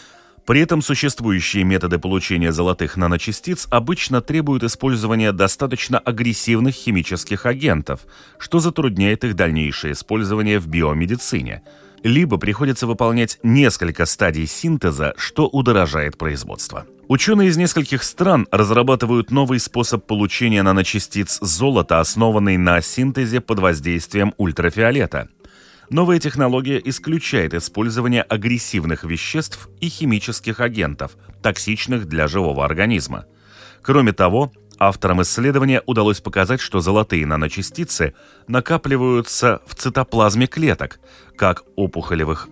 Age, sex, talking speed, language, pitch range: 30-49, male, 105 wpm, Russian, 90-125 Hz